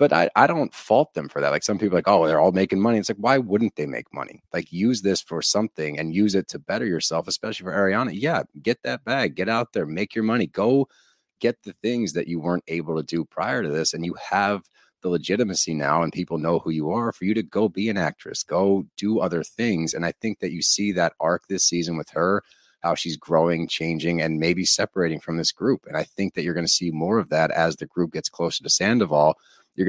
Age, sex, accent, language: 30-49, male, American, English